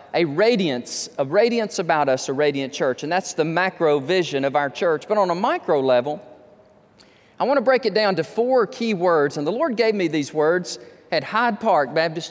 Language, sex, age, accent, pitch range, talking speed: English, male, 40-59, American, 175-285 Hz, 210 wpm